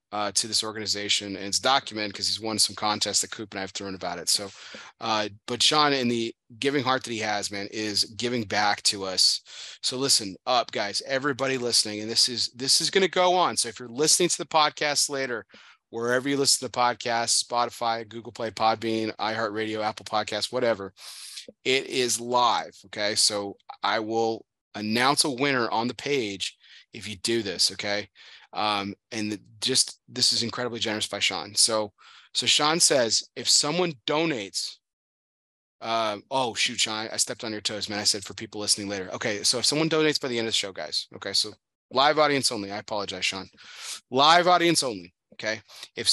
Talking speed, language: 195 wpm, English